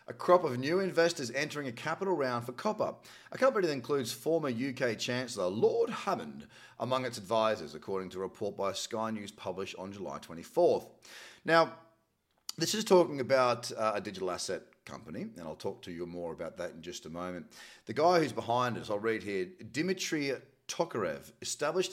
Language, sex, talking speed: English, male, 185 wpm